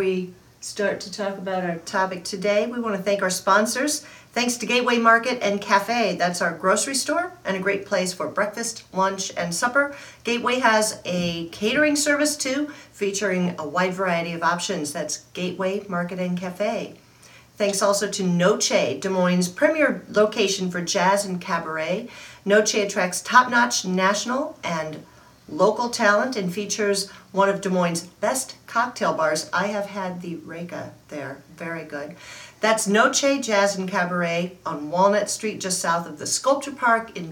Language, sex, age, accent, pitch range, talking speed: English, female, 50-69, American, 180-220 Hz, 160 wpm